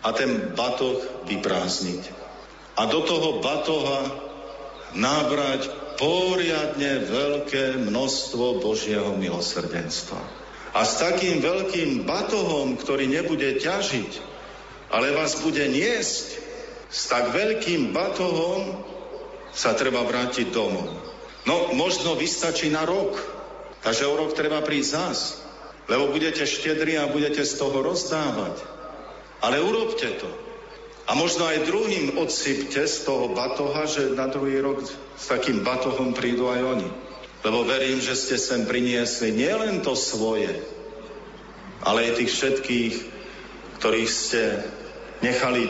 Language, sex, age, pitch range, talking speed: Slovak, male, 50-69, 125-155 Hz, 115 wpm